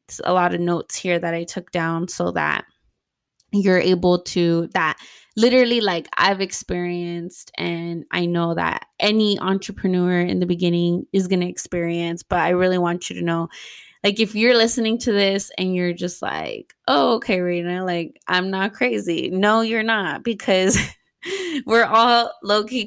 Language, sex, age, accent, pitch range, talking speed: English, female, 20-39, American, 175-205 Hz, 165 wpm